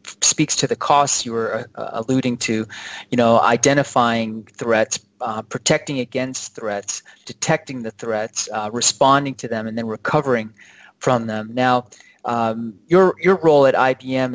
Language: English